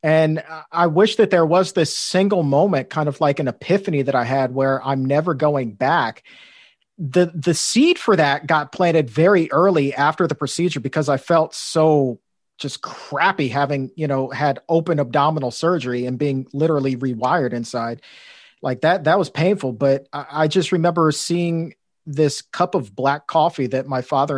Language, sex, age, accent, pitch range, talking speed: English, male, 40-59, American, 135-175 Hz, 170 wpm